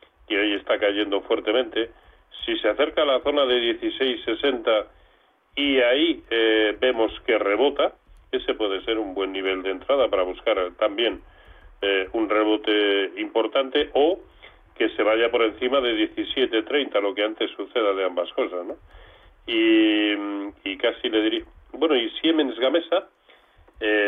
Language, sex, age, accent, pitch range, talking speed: Spanish, male, 40-59, Spanish, 100-130 Hz, 145 wpm